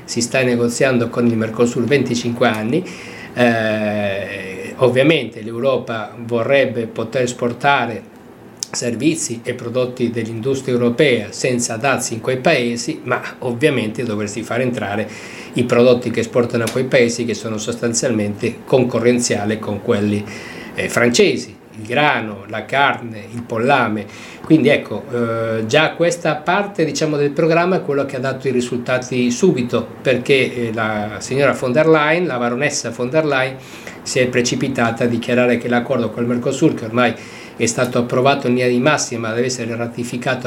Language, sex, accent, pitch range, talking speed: Italian, male, native, 115-130 Hz, 150 wpm